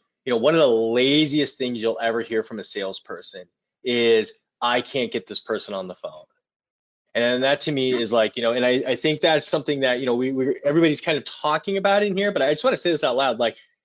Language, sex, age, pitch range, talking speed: English, male, 20-39, 115-150 Hz, 250 wpm